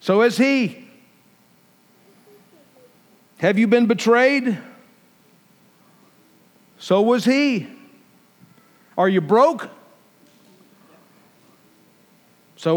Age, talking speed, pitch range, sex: 50-69, 65 wpm, 205-255 Hz, male